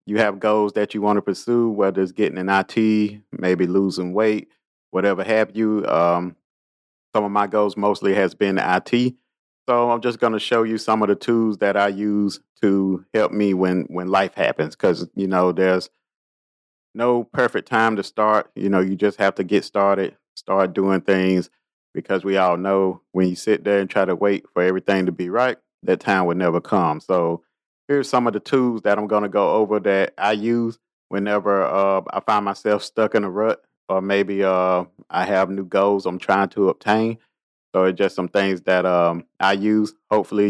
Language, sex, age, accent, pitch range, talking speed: English, male, 30-49, American, 95-110 Hz, 200 wpm